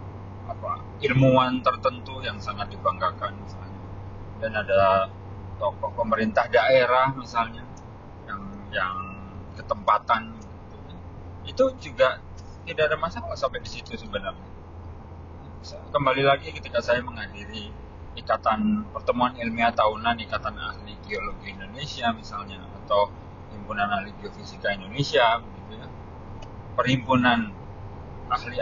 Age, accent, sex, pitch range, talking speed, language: 20-39, native, male, 100-115 Hz, 100 wpm, Indonesian